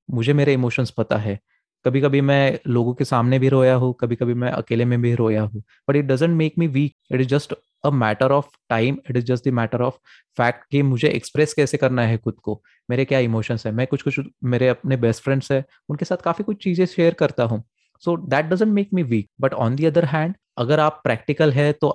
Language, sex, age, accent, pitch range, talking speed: Hindi, male, 20-39, native, 115-140 Hz, 215 wpm